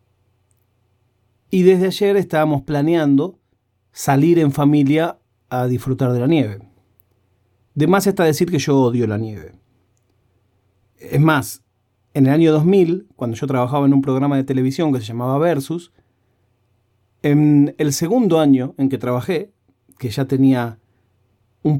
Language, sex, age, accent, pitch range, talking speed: Spanish, male, 40-59, Argentinian, 115-170 Hz, 140 wpm